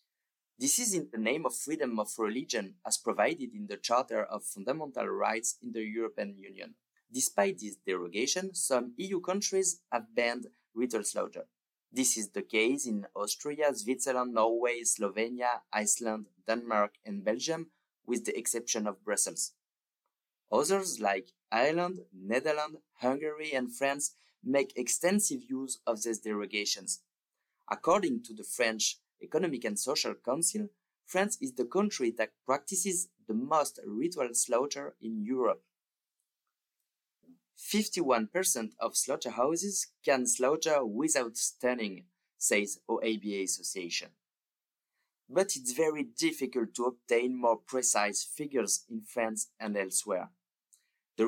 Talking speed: 125 wpm